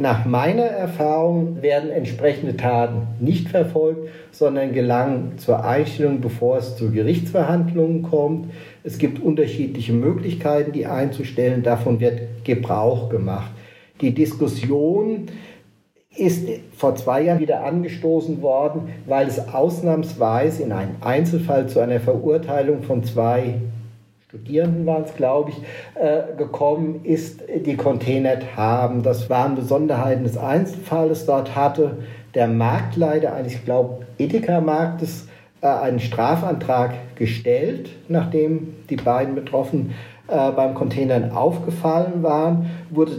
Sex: male